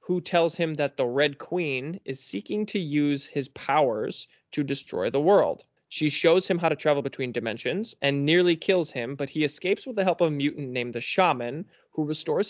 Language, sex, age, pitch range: English, male, 20-39, 130-160 Hz